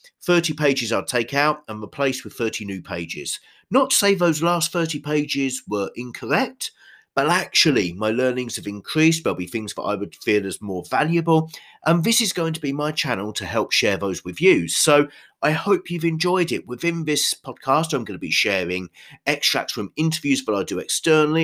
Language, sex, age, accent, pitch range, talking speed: English, male, 40-59, British, 105-160 Hz, 200 wpm